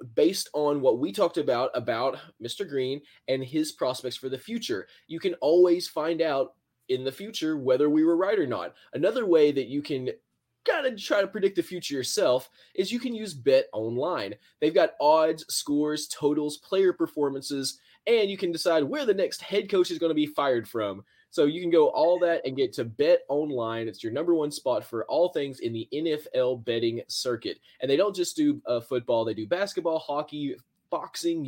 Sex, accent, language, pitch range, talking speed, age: male, American, English, 130-185 Hz, 200 wpm, 20-39